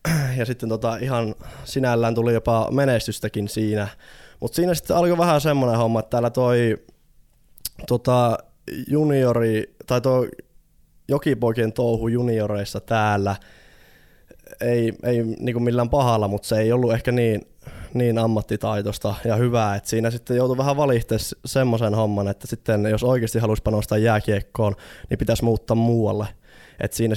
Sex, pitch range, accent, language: male, 105-120 Hz, native, Finnish